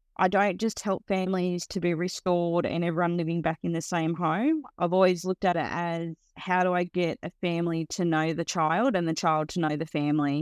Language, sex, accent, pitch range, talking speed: English, female, Australian, 155-180 Hz, 225 wpm